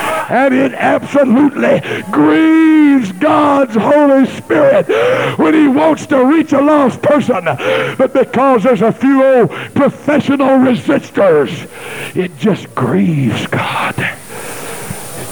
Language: English